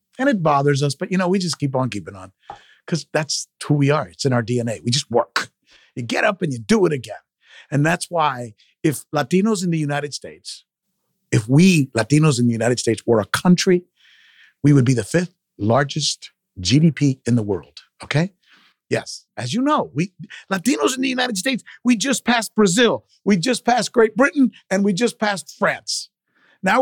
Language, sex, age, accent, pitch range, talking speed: English, male, 50-69, American, 140-210 Hz, 195 wpm